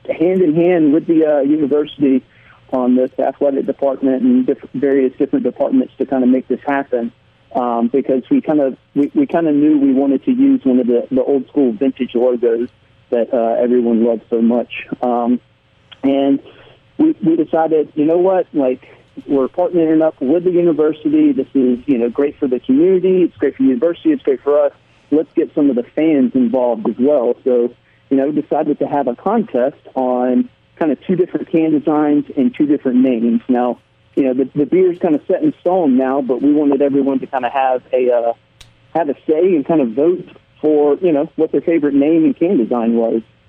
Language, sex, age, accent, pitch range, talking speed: English, male, 40-59, American, 130-165 Hz, 210 wpm